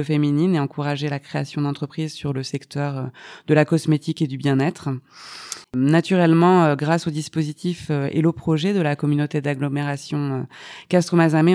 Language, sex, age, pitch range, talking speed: French, female, 20-39, 140-165 Hz, 135 wpm